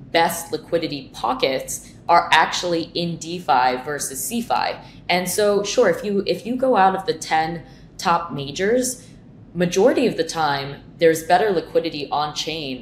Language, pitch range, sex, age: English, 135-175 Hz, female, 20-39